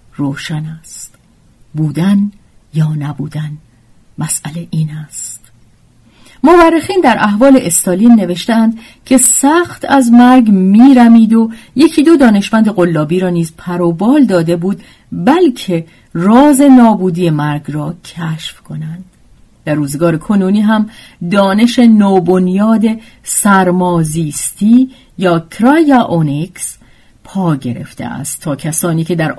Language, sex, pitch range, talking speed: Persian, female, 155-225 Hz, 105 wpm